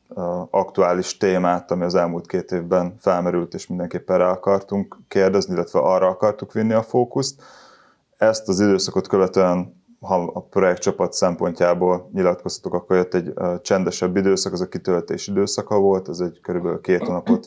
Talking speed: 150 wpm